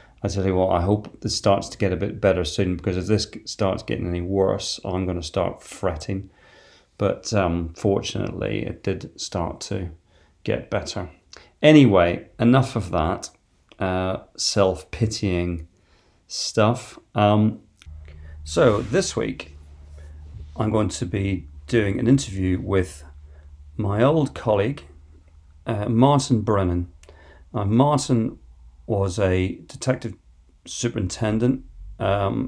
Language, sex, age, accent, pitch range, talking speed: English, male, 40-59, British, 90-110 Hz, 125 wpm